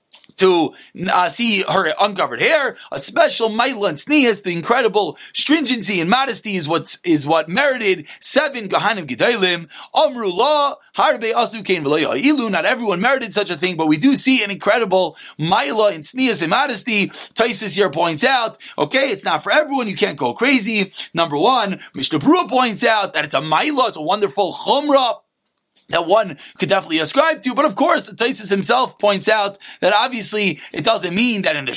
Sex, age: male, 30-49